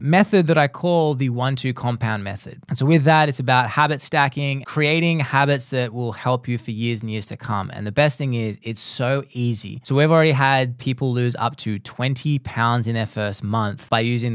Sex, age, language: male, 20-39, English